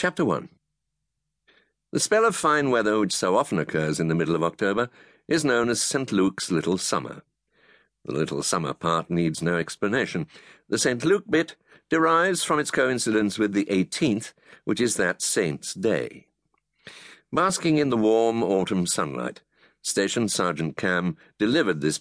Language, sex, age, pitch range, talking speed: English, male, 60-79, 85-125 Hz, 155 wpm